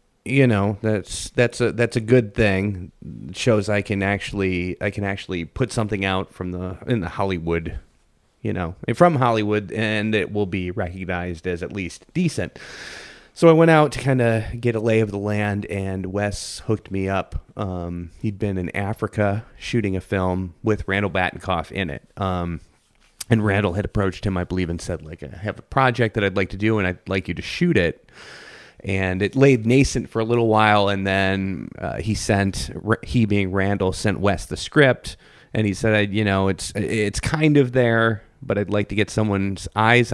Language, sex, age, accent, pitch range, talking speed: English, male, 30-49, American, 95-110 Hz, 200 wpm